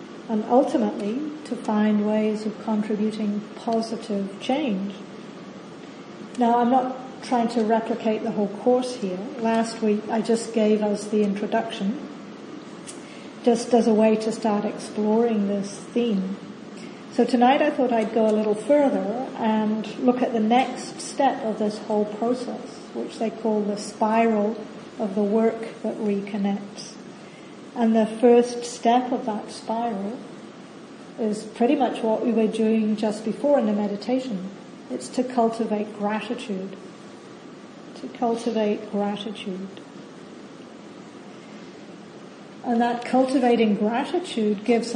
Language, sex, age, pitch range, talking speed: English, female, 40-59, 210-240 Hz, 130 wpm